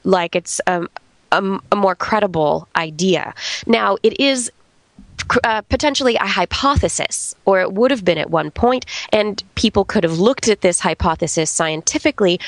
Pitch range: 170-215 Hz